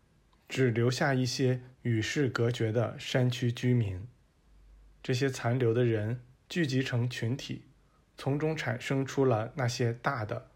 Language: Chinese